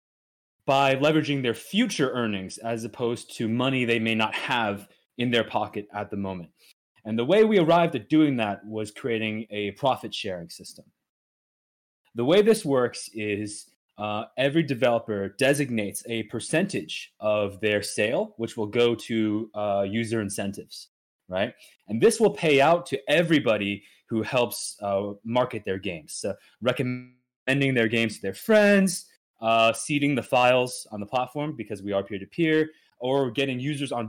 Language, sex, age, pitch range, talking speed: English, male, 20-39, 110-145 Hz, 160 wpm